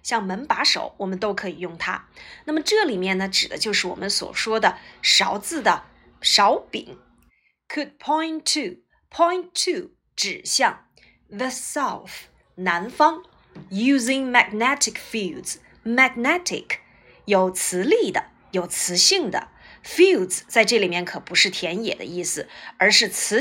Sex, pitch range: female, 205-320 Hz